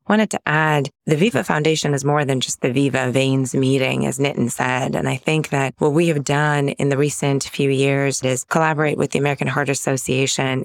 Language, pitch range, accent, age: English, 140-160 Hz, American, 20-39